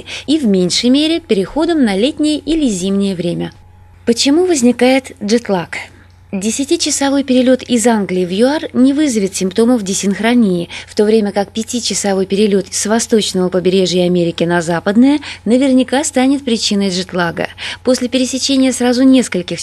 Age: 20-39